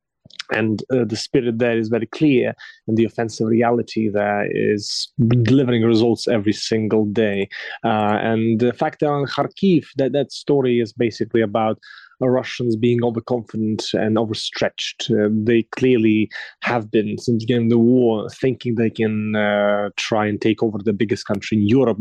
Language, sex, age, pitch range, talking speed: English, male, 20-39, 110-125 Hz, 165 wpm